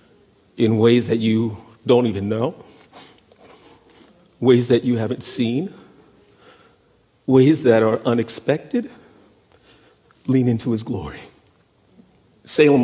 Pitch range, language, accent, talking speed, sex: 100-120 Hz, English, American, 100 wpm, male